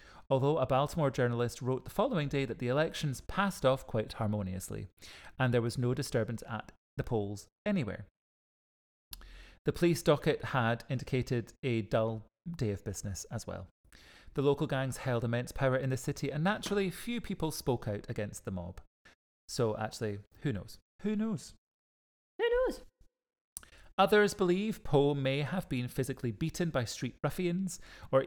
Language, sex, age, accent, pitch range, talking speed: English, male, 30-49, British, 110-150 Hz, 155 wpm